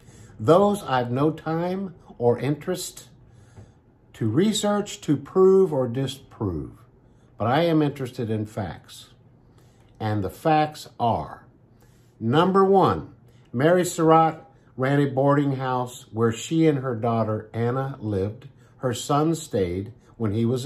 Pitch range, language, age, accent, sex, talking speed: 115-150 Hz, English, 50-69, American, male, 125 wpm